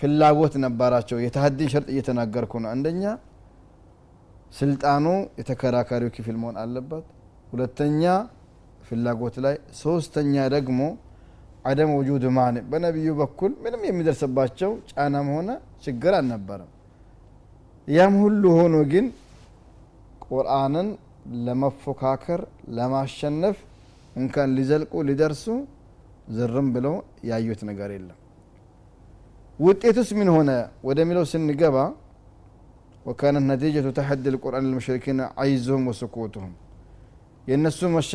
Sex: male